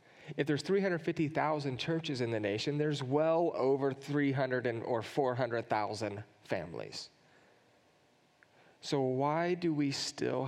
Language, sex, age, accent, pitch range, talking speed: English, male, 30-49, American, 130-155 Hz, 110 wpm